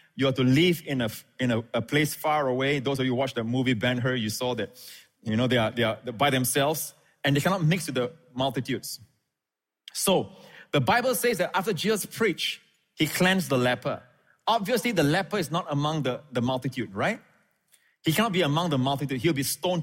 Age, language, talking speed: 30-49, English, 210 wpm